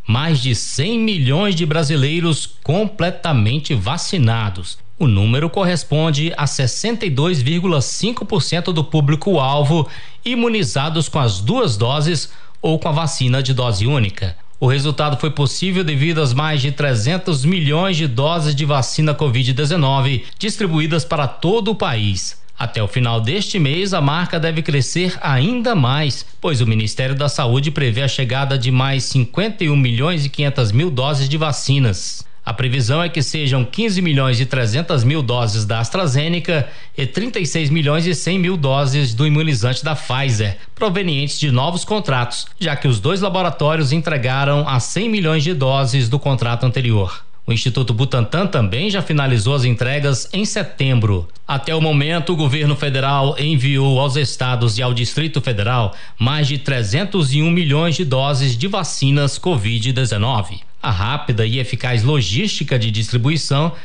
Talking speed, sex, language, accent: 150 wpm, male, Portuguese, Brazilian